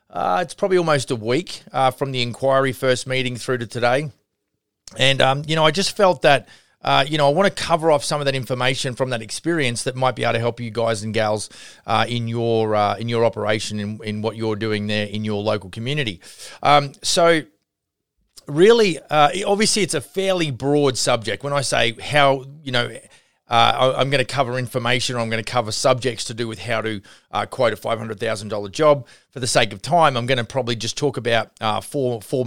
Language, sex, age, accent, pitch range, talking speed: English, male, 30-49, Australian, 110-140 Hz, 220 wpm